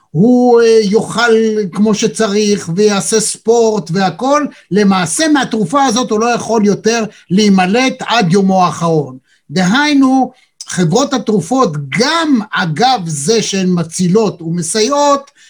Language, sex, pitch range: Hebrew, male, 180-240 Hz